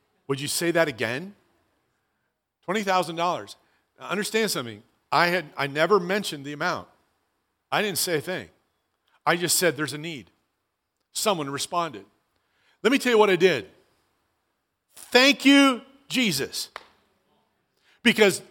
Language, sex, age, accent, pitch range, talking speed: English, male, 50-69, American, 175-260 Hz, 125 wpm